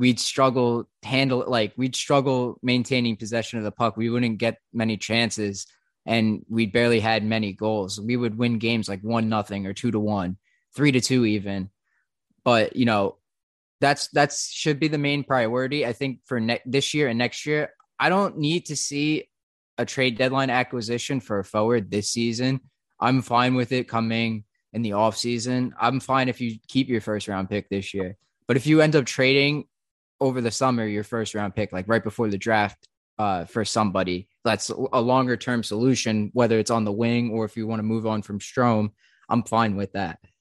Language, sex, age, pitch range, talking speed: English, male, 20-39, 110-125 Hz, 195 wpm